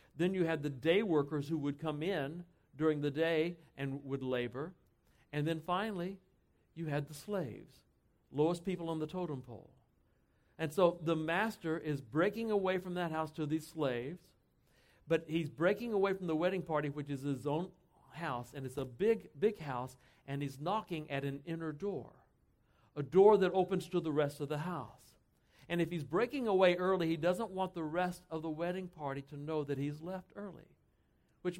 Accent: American